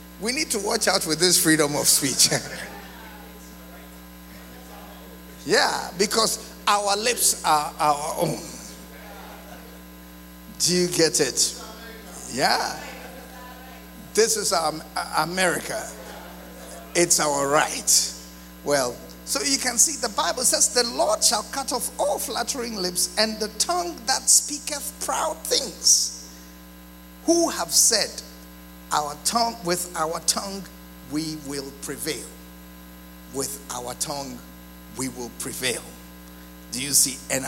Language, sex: English, male